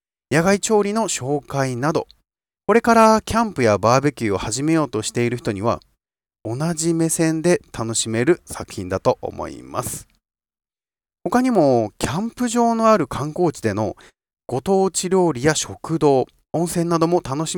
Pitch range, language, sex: 110-180 Hz, Japanese, male